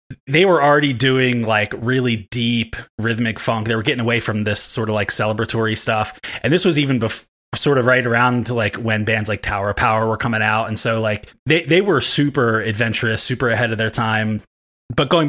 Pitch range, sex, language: 110-130 Hz, male, English